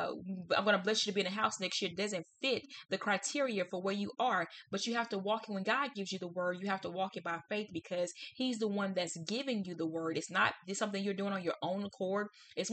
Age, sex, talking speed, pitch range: 20-39, female, 285 wpm, 180-210 Hz